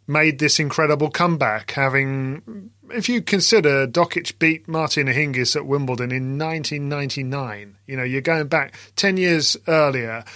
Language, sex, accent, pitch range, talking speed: English, male, British, 130-160 Hz, 140 wpm